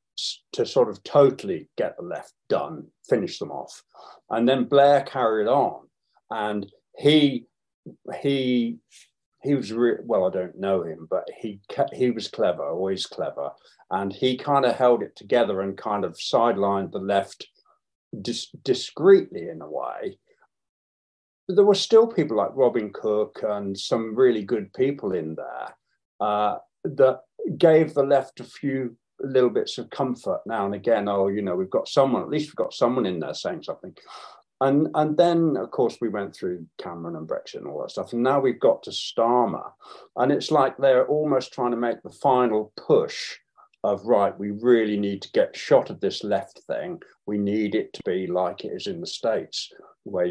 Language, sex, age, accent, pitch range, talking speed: English, male, 50-69, British, 105-150 Hz, 180 wpm